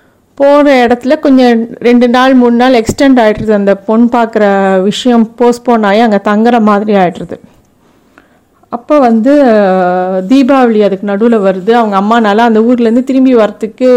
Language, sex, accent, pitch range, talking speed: Tamil, female, native, 210-255 Hz, 130 wpm